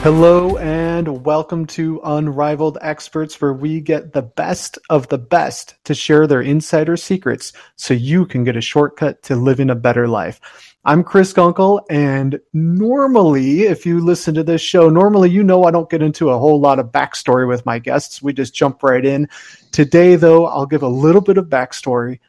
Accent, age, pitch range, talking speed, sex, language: American, 30-49, 135-165 Hz, 190 wpm, male, English